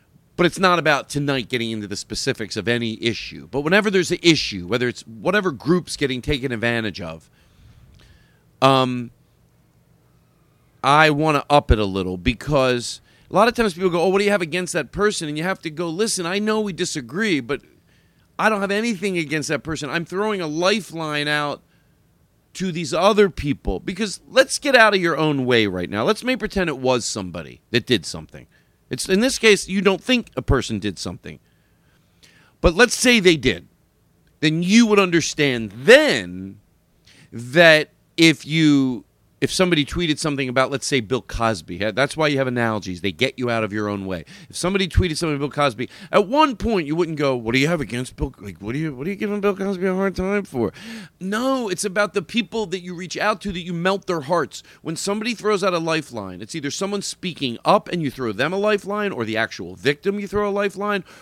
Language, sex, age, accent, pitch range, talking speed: English, male, 40-59, American, 125-195 Hz, 210 wpm